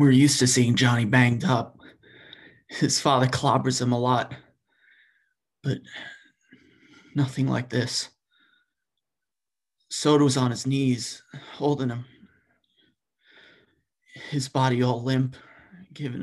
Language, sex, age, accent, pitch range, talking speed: English, male, 30-49, American, 125-140 Hz, 105 wpm